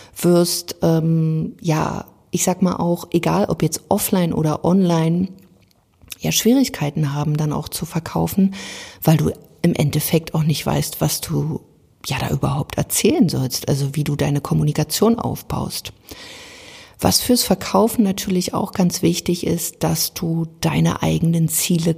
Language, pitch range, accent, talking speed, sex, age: German, 150-190 Hz, German, 145 wpm, female, 50-69